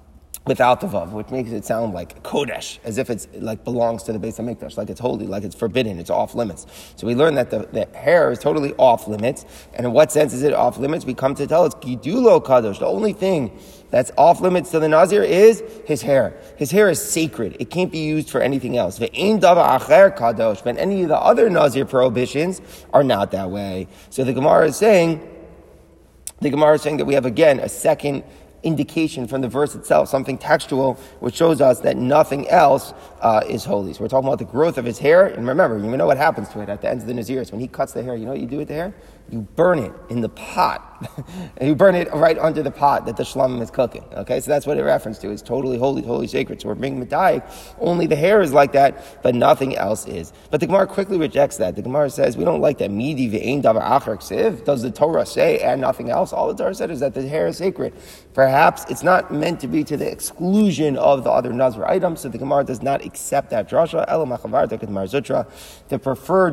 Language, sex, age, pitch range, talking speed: English, male, 30-49, 120-160 Hz, 225 wpm